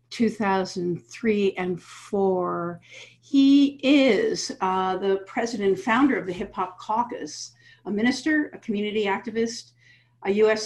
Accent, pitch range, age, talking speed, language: American, 180-230 Hz, 50-69, 120 wpm, English